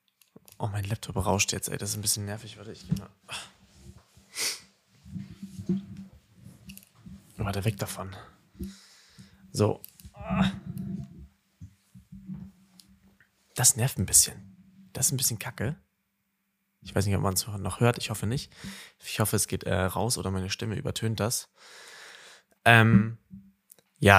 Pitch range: 100-125 Hz